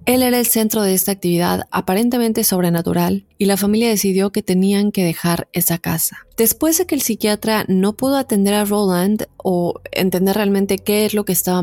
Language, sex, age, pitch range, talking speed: Spanish, female, 20-39, 180-210 Hz, 190 wpm